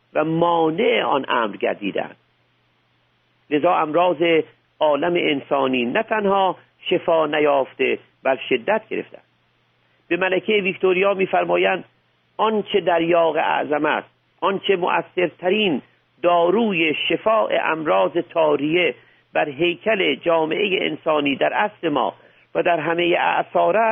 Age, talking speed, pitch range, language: 50-69, 105 wpm, 155-200 Hz, Persian